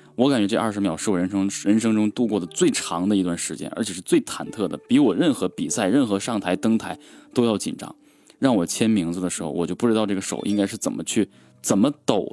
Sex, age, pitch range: male, 20-39, 95-125 Hz